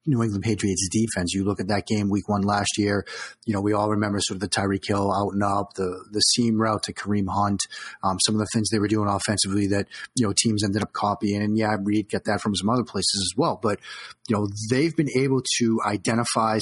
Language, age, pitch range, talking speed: English, 30-49, 100-115 Hz, 245 wpm